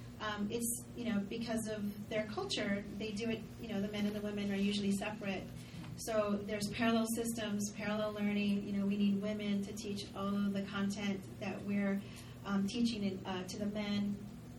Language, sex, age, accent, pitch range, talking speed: English, female, 30-49, American, 200-230 Hz, 195 wpm